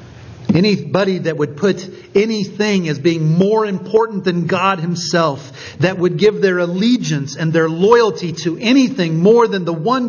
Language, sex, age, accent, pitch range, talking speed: English, male, 50-69, American, 130-190 Hz, 155 wpm